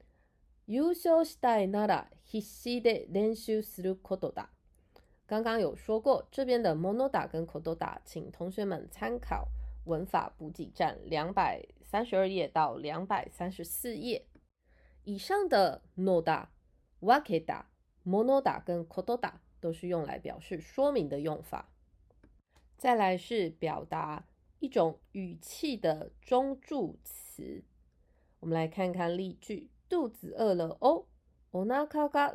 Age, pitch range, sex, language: 20-39, 160-240 Hz, female, Japanese